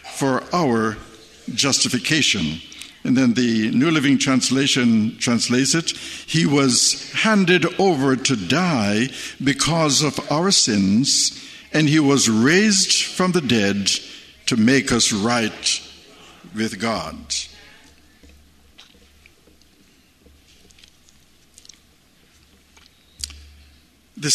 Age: 60-79